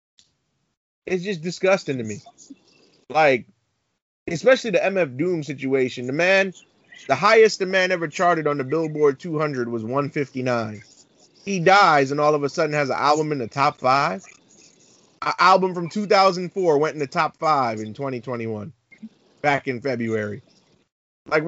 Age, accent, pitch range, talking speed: 20-39, American, 135-190 Hz, 150 wpm